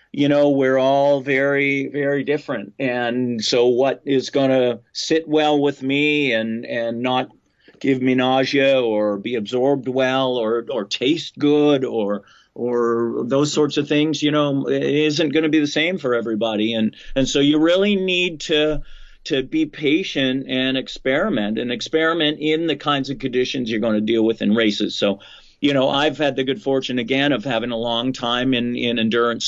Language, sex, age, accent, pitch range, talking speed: English, male, 40-59, American, 125-150 Hz, 185 wpm